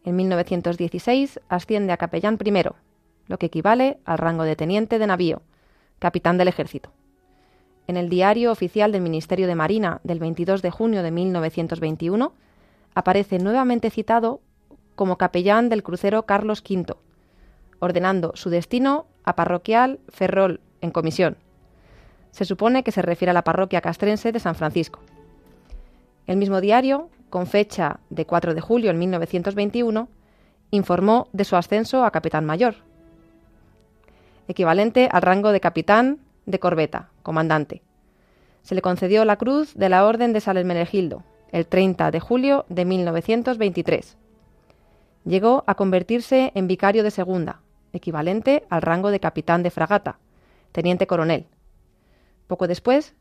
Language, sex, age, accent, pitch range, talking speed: Spanish, female, 30-49, Spanish, 170-215 Hz, 135 wpm